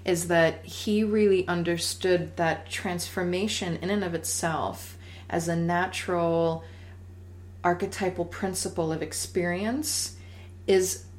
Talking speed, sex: 100 wpm, female